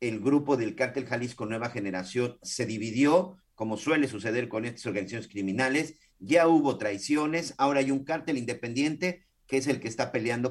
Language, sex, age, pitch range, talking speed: Spanish, male, 50-69, 120-155 Hz, 170 wpm